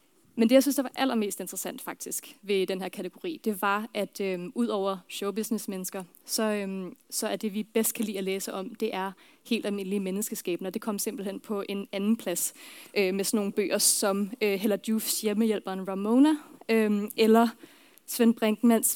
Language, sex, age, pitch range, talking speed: Danish, female, 20-39, 195-240 Hz, 185 wpm